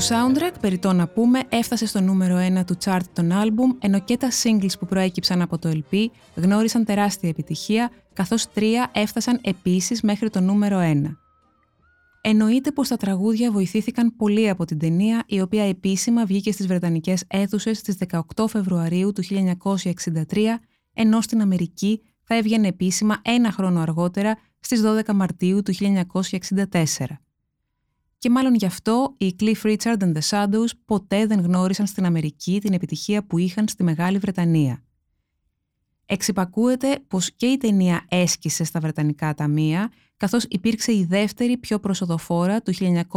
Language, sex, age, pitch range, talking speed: Greek, female, 20-39, 175-220 Hz, 150 wpm